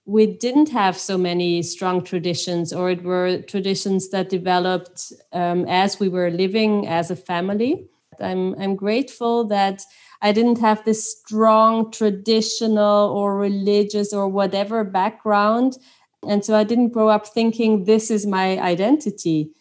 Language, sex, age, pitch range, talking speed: English, female, 30-49, 190-220 Hz, 145 wpm